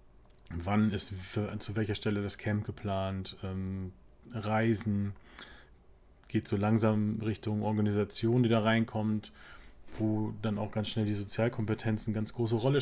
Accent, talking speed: German, 130 wpm